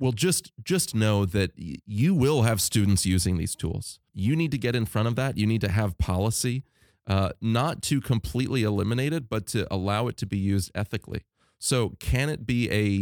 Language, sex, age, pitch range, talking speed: English, male, 30-49, 95-115 Hz, 205 wpm